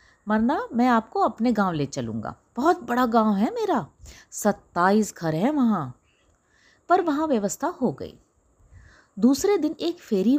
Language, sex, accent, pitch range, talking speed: Hindi, female, native, 185-285 Hz, 145 wpm